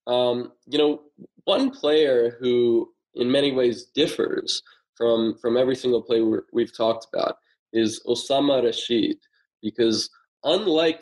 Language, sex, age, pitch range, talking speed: English, male, 20-39, 115-140 Hz, 125 wpm